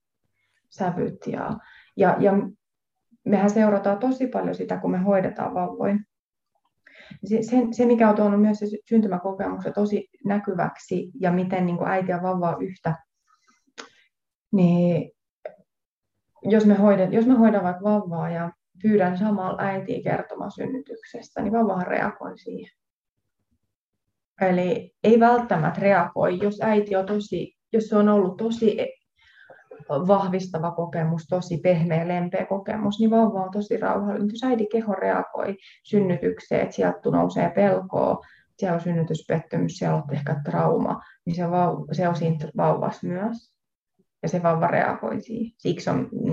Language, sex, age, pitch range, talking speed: Finnish, female, 20-39, 175-220 Hz, 130 wpm